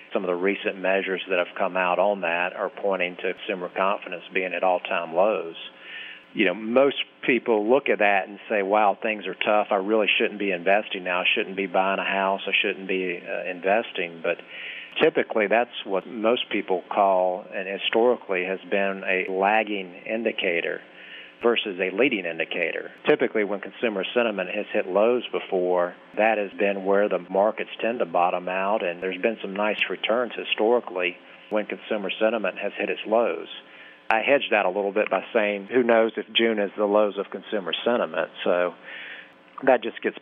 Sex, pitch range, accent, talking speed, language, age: male, 90-110 Hz, American, 180 wpm, English, 40-59